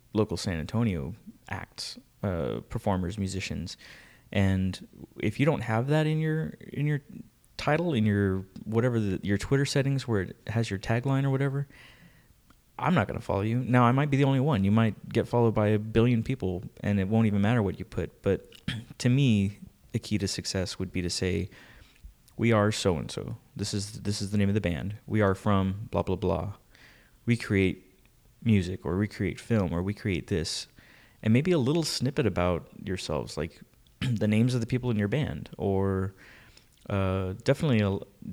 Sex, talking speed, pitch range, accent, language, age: male, 190 wpm, 95-120 Hz, American, English, 20-39